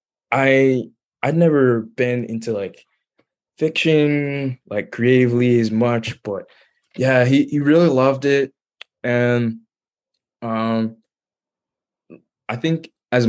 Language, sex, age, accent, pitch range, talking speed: English, male, 20-39, American, 110-130 Hz, 105 wpm